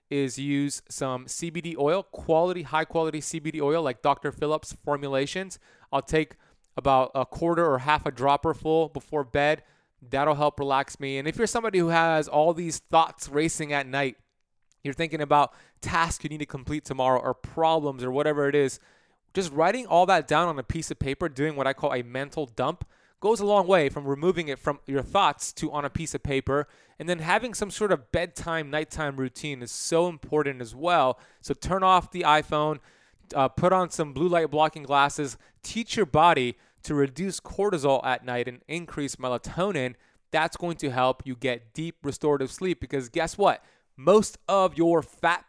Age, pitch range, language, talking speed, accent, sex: 20-39, 135-165 Hz, English, 190 wpm, American, male